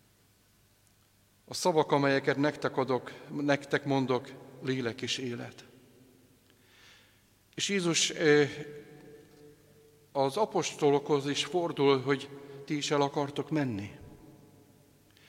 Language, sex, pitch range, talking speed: Hungarian, male, 130-155 Hz, 80 wpm